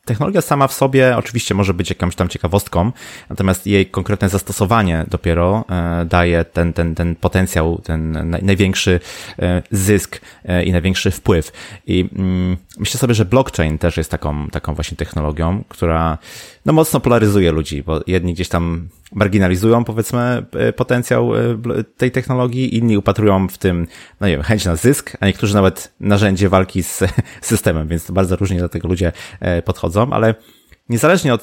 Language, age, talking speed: Polish, 20-39, 150 wpm